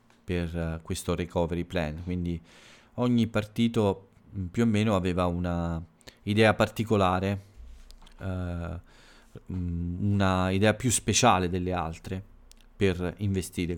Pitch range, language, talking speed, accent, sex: 90-105 Hz, Italian, 95 wpm, native, male